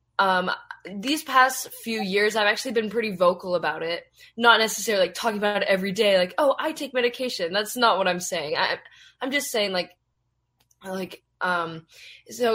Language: English